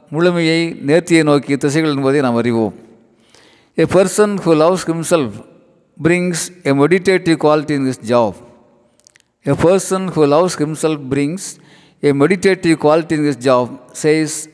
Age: 50-69